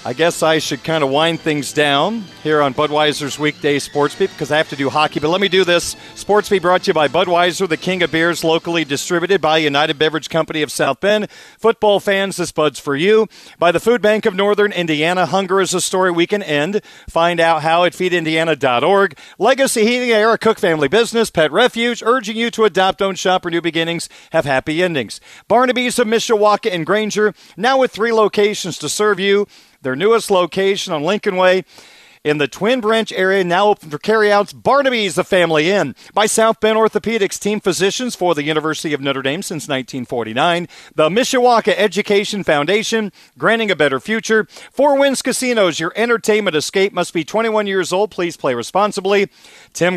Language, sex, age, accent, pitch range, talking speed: English, male, 40-59, American, 160-210 Hz, 190 wpm